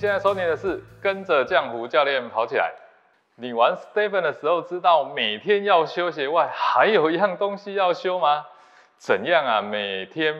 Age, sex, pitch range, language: 20-39, male, 135-210 Hz, Chinese